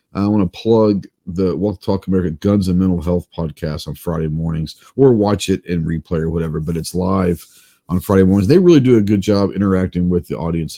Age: 40-59